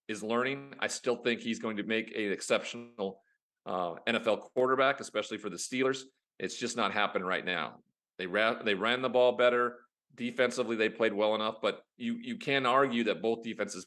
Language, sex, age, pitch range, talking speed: English, male, 40-59, 105-130 Hz, 185 wpm